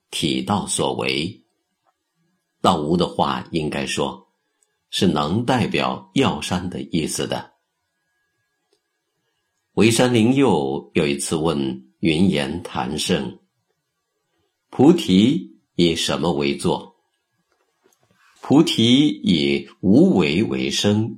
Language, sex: Chinese, male